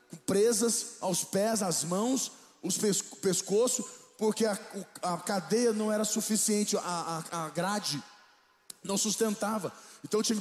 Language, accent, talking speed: Portuguese, Brazilian, 140 wpm